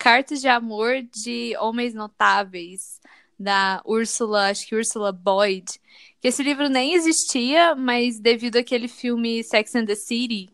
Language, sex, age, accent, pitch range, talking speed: Portuguese, female, 10-29, Brazilian, 210-260 Hz, 135 wpm